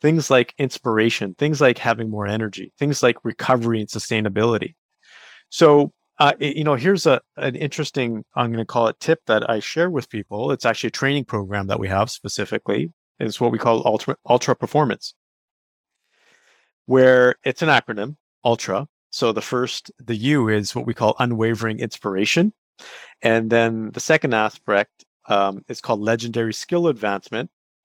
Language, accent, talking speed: English, American, 160 wpm